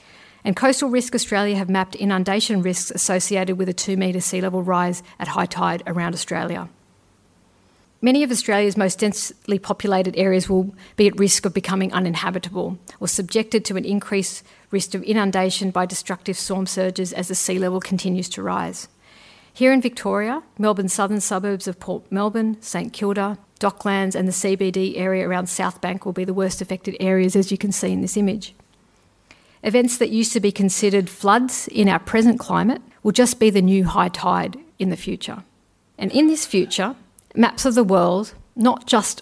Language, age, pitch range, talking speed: English, 50-69, 185-210 Hz, 180 wpm